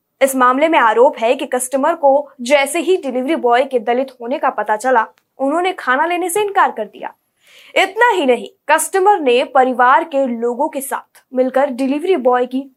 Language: Hindi